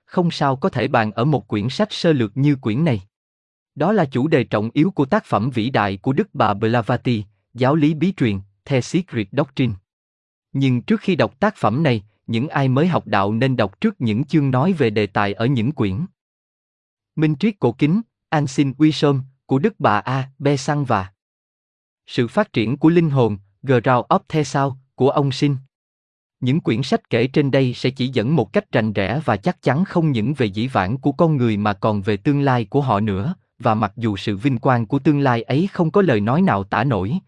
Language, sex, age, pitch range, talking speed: Vietnamese, male, 20-39, 110-155 Hz, 215 wpm